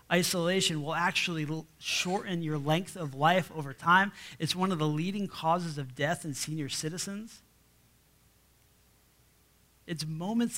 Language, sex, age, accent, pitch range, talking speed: English, male, 30-49, American, 150-195 Hz, 130 wpm